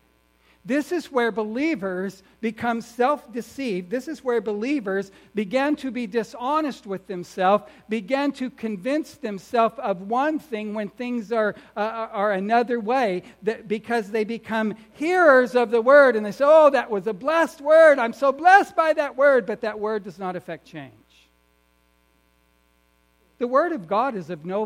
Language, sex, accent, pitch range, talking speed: English, male, American, 205-285 Hz, 165 wpm